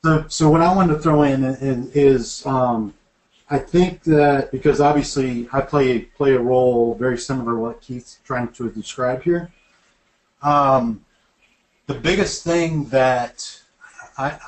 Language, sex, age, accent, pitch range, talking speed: English, male, 40-59, American, 125-150 Hz, 145 wpm